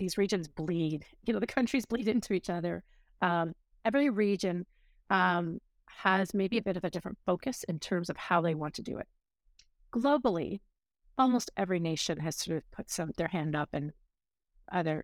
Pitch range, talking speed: 160-195 Hz, 185 wpm